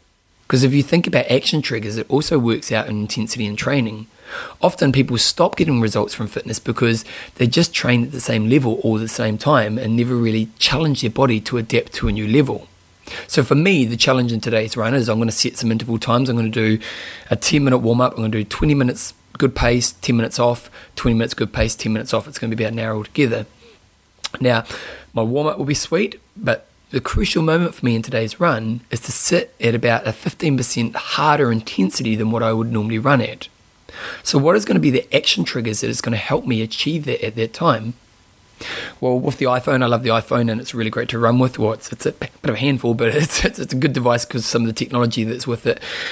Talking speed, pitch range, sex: 245 wpm, 110-130 Hz, male